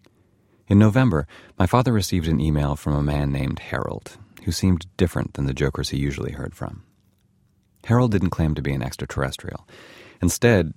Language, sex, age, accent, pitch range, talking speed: English, male, 30-49, American, 75-95 Hz, 165 wpm